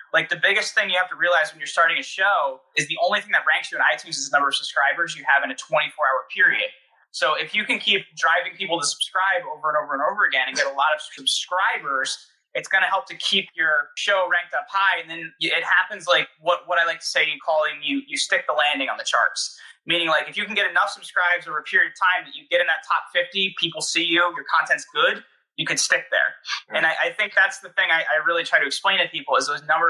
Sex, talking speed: male, 265 wpm